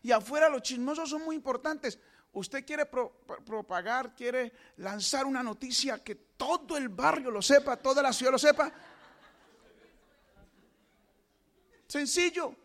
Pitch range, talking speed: 220-295 Hz, 125 wpm